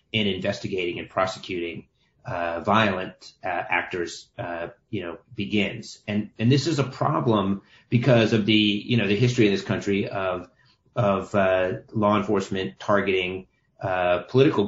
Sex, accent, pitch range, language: male, American, 95-115 Hz, English